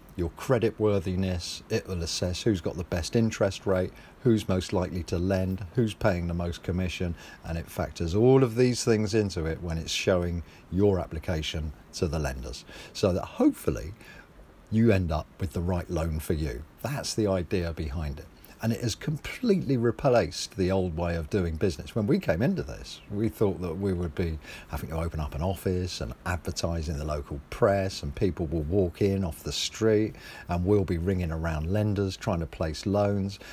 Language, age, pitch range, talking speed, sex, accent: English, 40-59, 85-110 Hz, 190 wpm, male, British